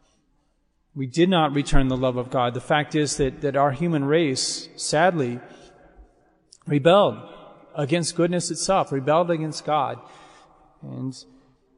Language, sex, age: English, male, 40-59